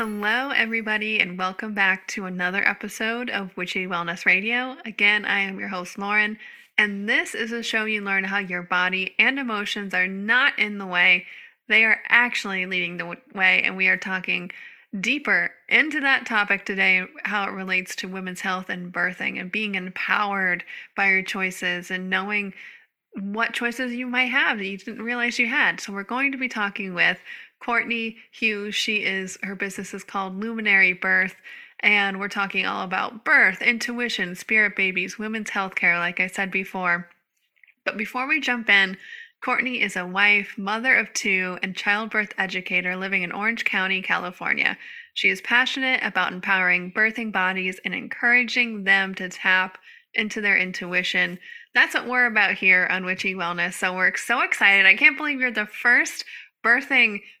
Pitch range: 185-230 Hz